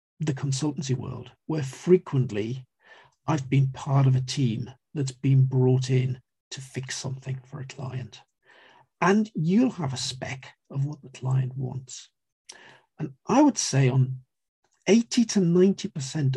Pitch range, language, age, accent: 130-160 Hz, English, 50-69, British